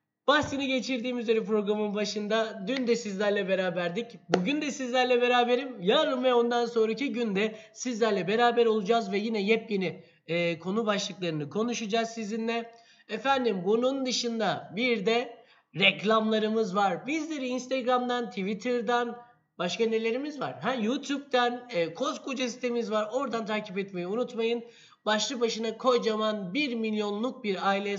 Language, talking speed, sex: Turkish, 125 wpm, male